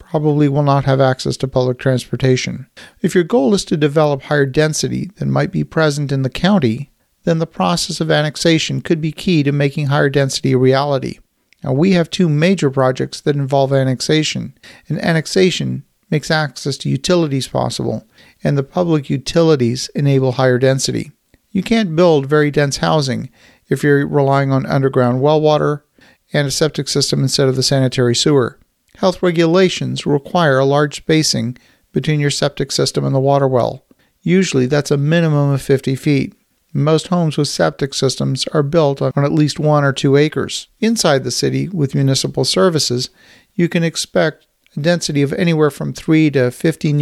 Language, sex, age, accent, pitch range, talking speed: English, male, 50-69, American, 135-165 Hz, 170 wpm